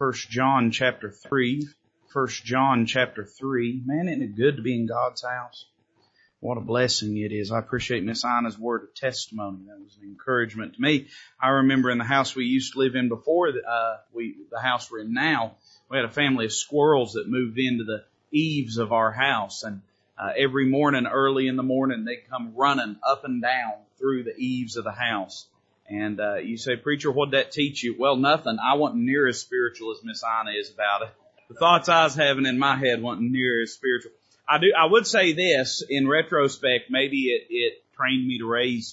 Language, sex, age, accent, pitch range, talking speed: English, male, 30-49, American, 115-140 Hz, 210 wpm